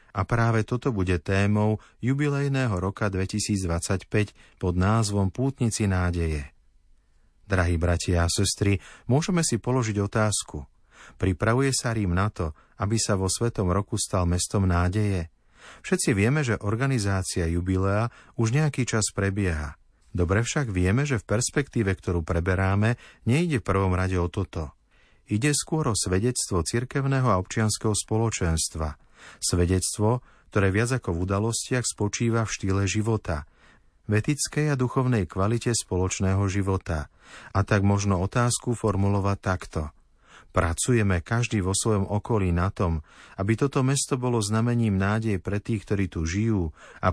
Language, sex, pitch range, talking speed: Slovak, male, 95-115 Hz, 135 wpm